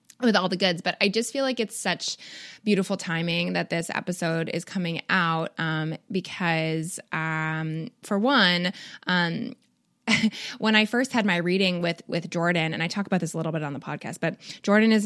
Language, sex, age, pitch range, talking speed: English, female, 20-39, 160-195 Hz, 190 wpm